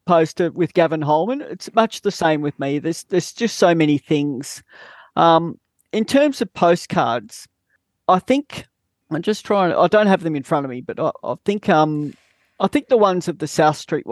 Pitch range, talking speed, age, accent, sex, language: 145-170 Hz, 200 wpm, 40-59, Australian, male, English